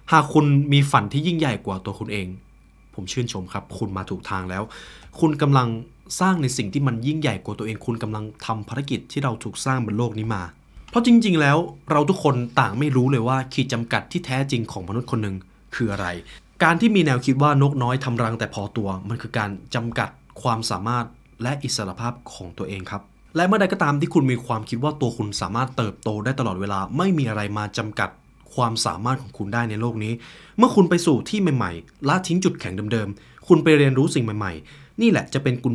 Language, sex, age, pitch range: Thai, male, 20-39, 105-145 Hz